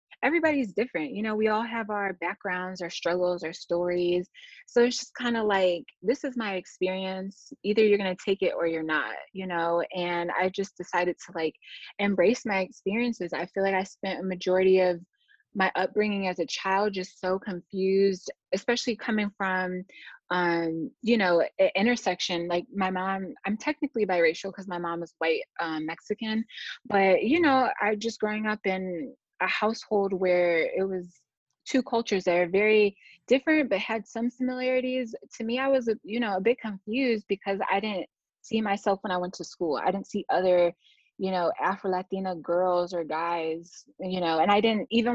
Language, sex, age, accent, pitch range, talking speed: English, female, 20-39, American, 175-220 Hz, 185 wpm